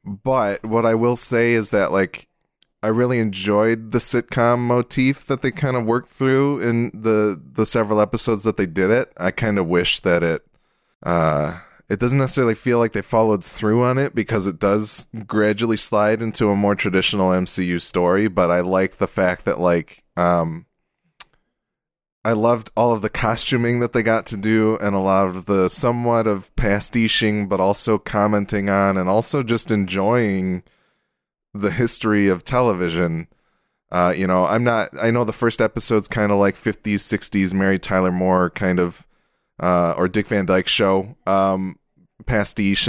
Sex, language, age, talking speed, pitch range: male, English, 20-39, 175 wpm, 95-115 Hz